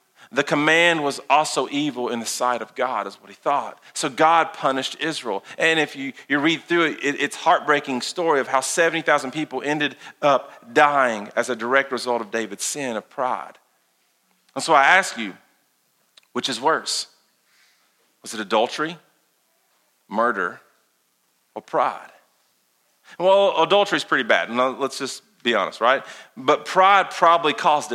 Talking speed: 160 wpm